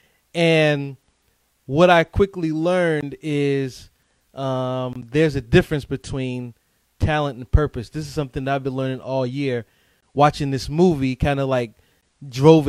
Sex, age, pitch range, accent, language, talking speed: male, 20-39, 130-155 Hz, American, English, 140 wpm